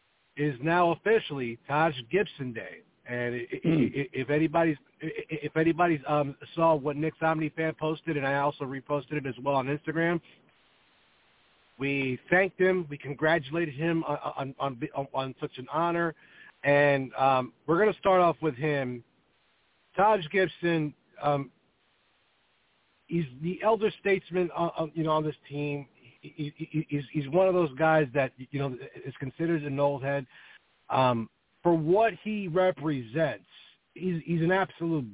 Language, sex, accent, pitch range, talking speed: English, male, American, 135-165 Hz, 145 wpm